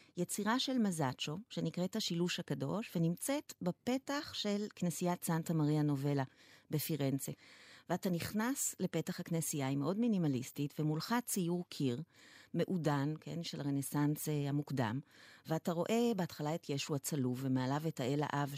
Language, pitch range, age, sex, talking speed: Hebrew, 145-185 Hz, 40-59, female, 125 wpm